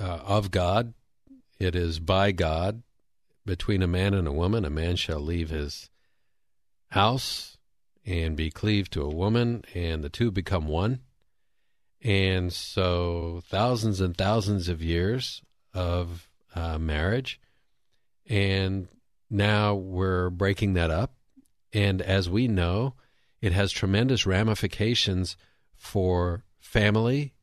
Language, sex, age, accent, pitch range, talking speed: English, male, 50-69, American, 90-120 Hz, 125 wpm